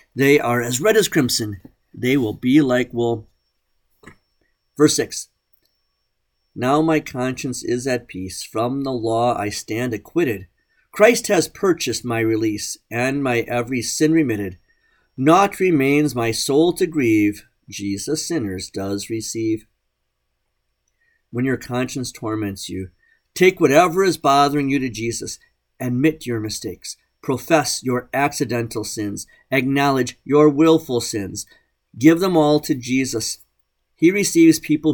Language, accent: English, American